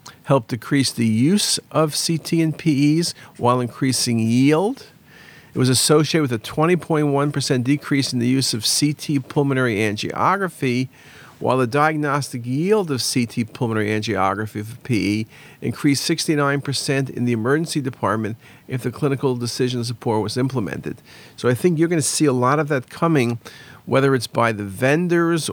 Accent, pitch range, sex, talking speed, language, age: American, 120-150 Hz, male, 155 wpm, English, 50-69